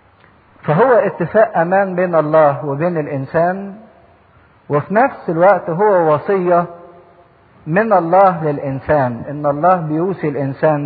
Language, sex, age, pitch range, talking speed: English, male, 50-69, 135-155 Hz, 105 wpm